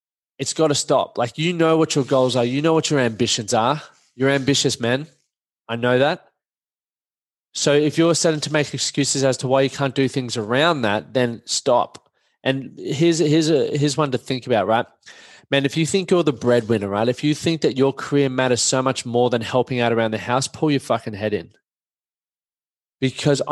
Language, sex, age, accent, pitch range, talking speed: English, male, 20-39, Australian, 125-150 Hz, 205 wpm